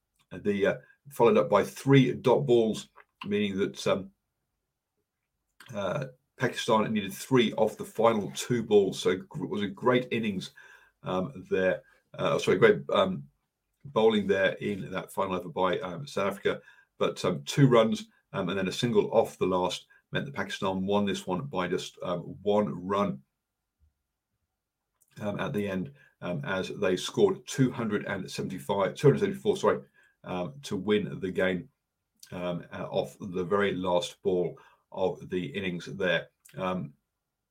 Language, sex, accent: English, male, British